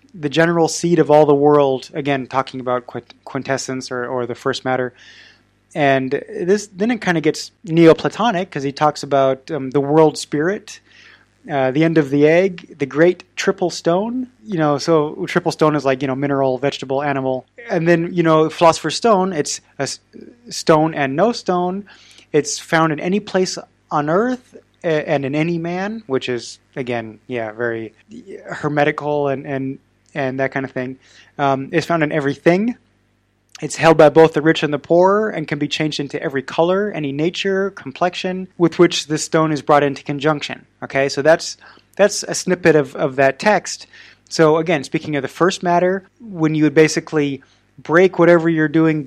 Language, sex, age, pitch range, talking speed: English, male, 20-39, 135-170 Hz, 180 wpm